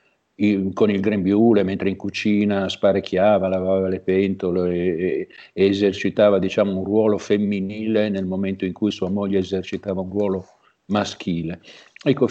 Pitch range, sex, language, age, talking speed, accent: 95-110 Hz, male, Italian, 50-69, 135 wpm, native